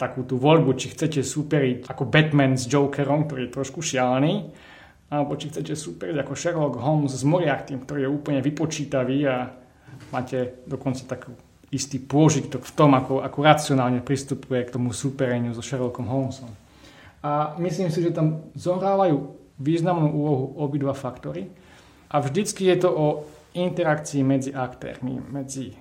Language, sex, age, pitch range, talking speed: Slovak, male, 20-39, 130-150 Hz, 150 wpm